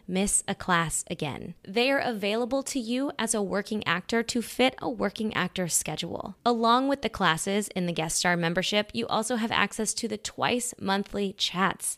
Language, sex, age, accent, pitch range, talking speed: English, female, 20-39, American, 180-235 Hz, 185 wpm